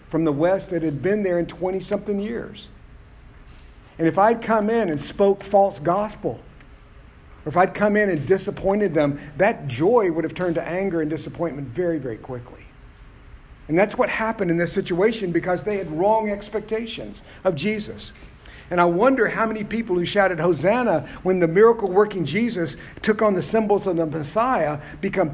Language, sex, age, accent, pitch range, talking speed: English, male, 50-69, American, 160-215 Hz, 175 wpm